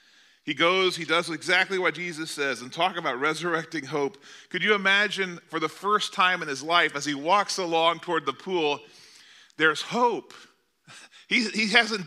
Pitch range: 155-210 Hz